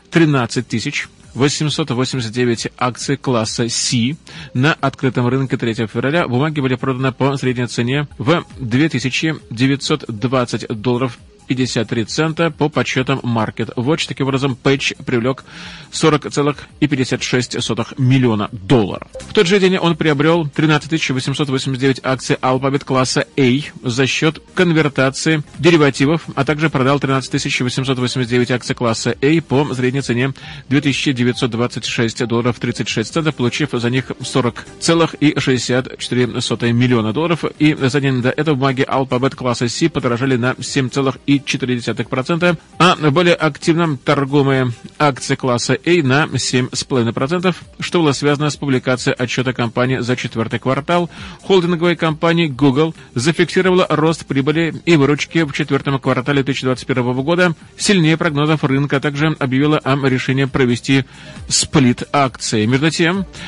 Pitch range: 125-155 Hz